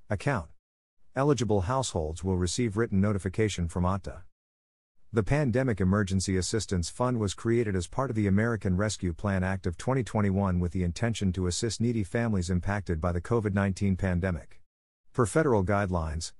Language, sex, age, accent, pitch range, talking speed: English, male, 50-69, American, 90-115 Hz, 150 wpm